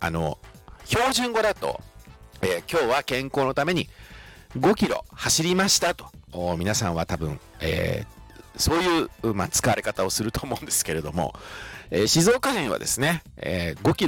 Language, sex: Japanese, male